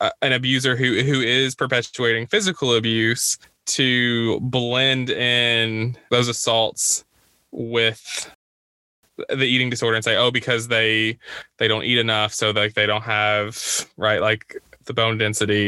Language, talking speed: English, 140 wpm